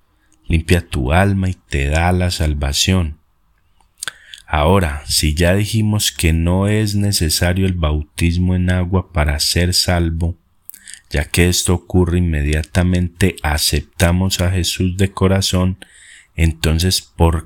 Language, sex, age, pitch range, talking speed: Spanish, male, 30-49, 80-95 Hz, 120 wpm